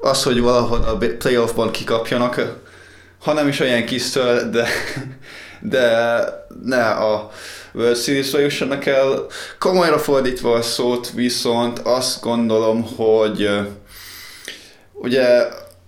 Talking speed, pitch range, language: 100 wpm, 105-130 Hz, Hungarian